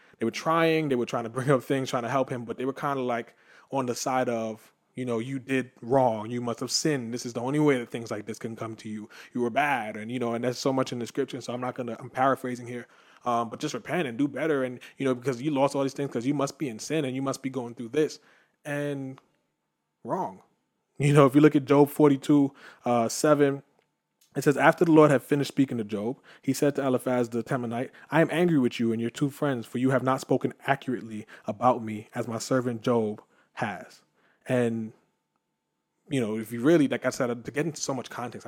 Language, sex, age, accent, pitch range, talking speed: English, male, 20-39, American, 120-140 Hz, 250 wpm